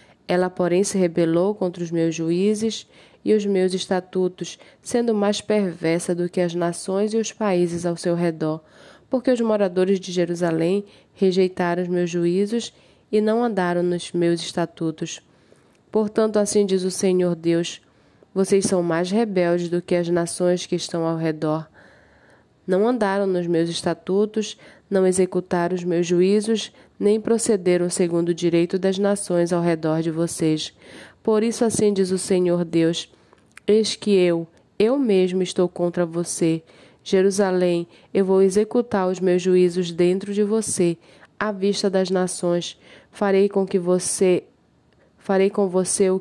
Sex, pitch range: female, 175-200 Hz